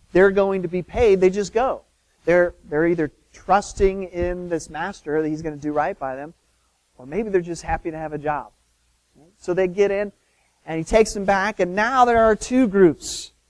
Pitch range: 140-200 Hz